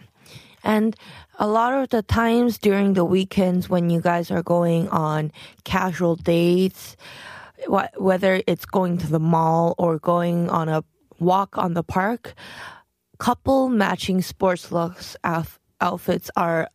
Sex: female